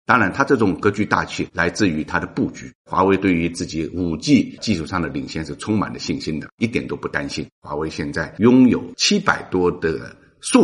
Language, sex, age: Chinese, male, 50-69